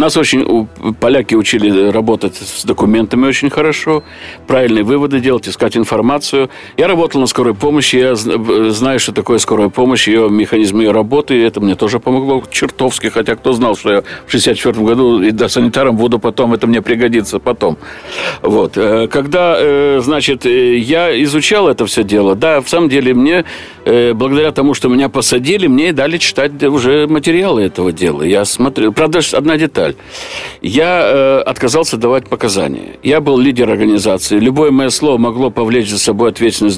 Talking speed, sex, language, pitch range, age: 165 wpm, male, Russian, 115-160 Hz, 60-79